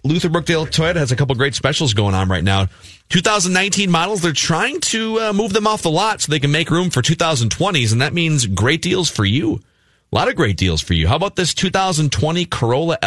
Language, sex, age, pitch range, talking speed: English, male, 30-49, 105-170 Hz, 225 wpm